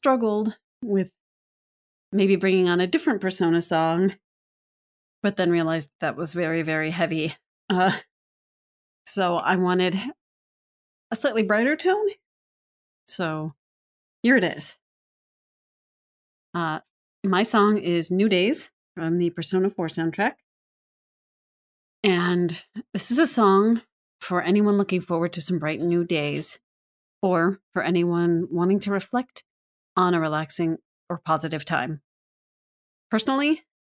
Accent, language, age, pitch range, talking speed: American, English, 30-49, 165-200 Hz, 120 wpm